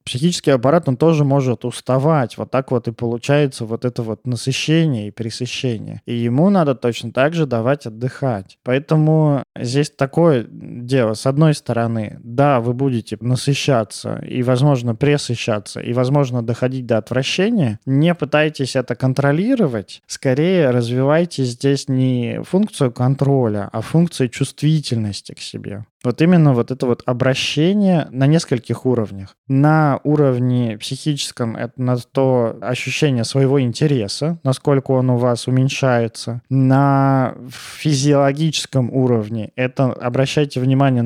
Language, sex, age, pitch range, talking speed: Russian, male, 20-39, 120-140 Hz, 130 wpm